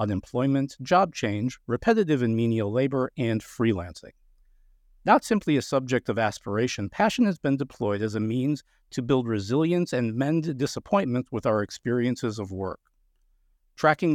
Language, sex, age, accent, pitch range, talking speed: English, male, 50-69, American, 110-145 Hz, 145 wpm